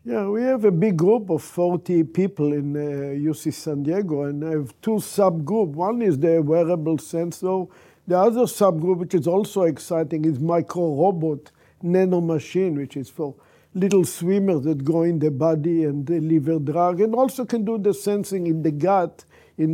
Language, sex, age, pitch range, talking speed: English, male, 50-69, 155-190 Hz, 175 wpm